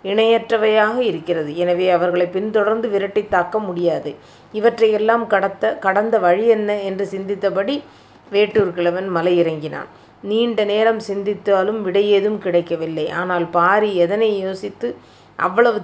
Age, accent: 30-49, native